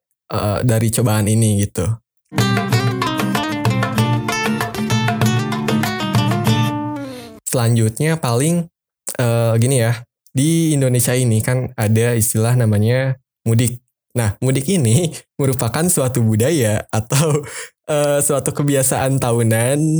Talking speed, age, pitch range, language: 85 wpm, 20-39, 110-135 Hz, Indonesian